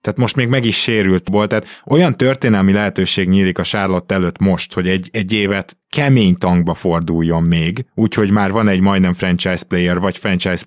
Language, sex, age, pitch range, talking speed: Hungarian, male, 20-39, 90-110 Hz, 185 wpm